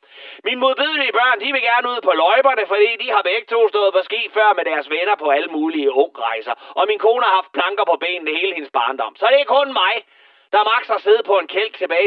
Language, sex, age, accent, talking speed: Danish, male, 30-49, native, 250 wpm